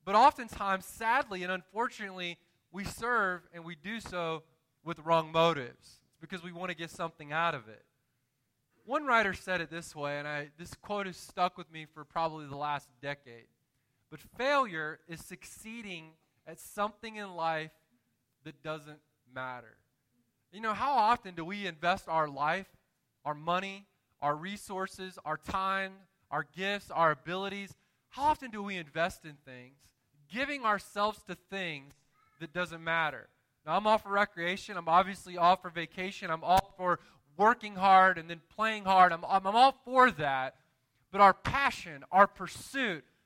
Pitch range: 150-200 Hz